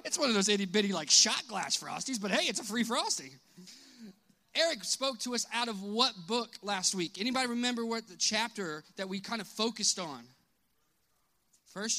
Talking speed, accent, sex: 185 wpm, American, male